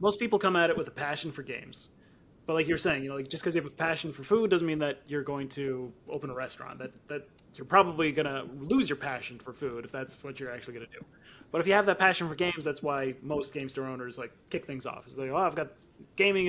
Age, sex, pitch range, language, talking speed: 30-49, male, 135-175 Hz, English, 280 wpm